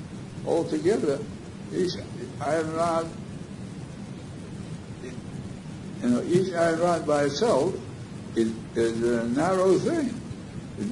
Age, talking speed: 60-79, 100 wpm